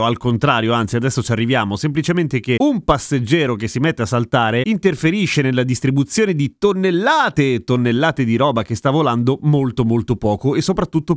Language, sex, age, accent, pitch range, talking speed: Italian, male, 30-49, native, 120-155 Hz, 165 wpm